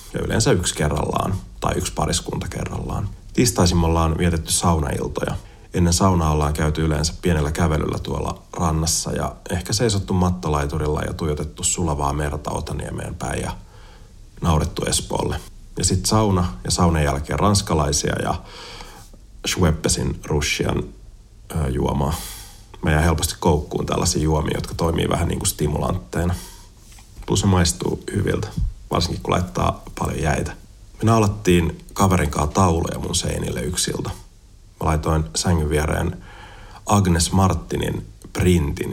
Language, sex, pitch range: Finnish, male, 80-95 Hz